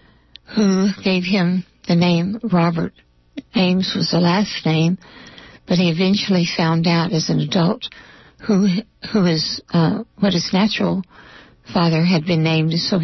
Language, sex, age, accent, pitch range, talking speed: English, female, 60-79, American, 170-200 Hz, 145 wpm